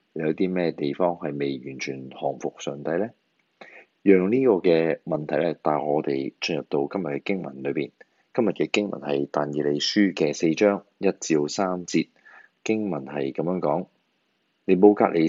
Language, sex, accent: Chinese, male, native